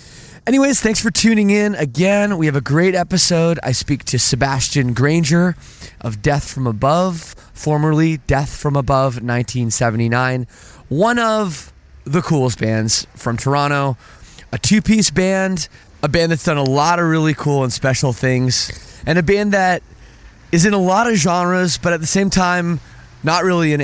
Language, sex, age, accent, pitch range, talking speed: English, male, 20-39, American, 115-160 Hz, 165 wpm